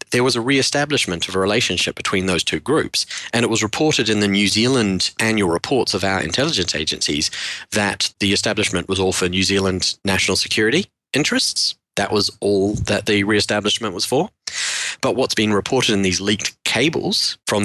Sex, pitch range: male, 95-125 Hz